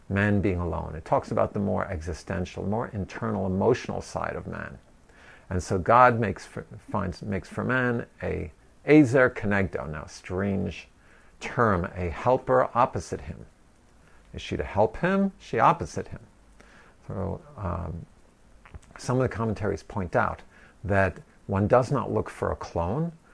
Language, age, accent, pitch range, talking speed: English, 50-69, American, 95-120 Hz, 150 wpm